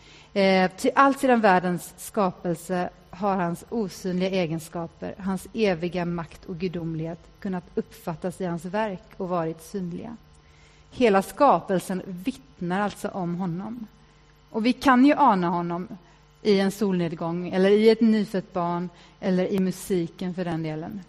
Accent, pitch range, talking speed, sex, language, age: Swedish, 175-215 Hz, 135 wpm, female, English, 30-49